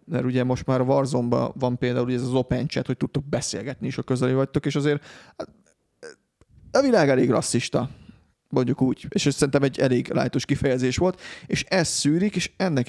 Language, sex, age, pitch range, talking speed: Hungarian, male, 30-49, 125-150 Hz, 175 wpm